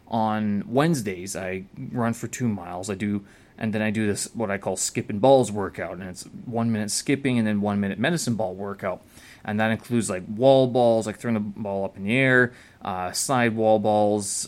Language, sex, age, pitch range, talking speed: English, male, 20-39, 105-130 Hz, 205 wpm